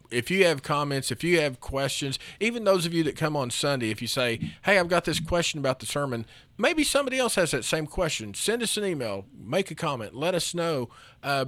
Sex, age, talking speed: male, 40-59, 235 wpm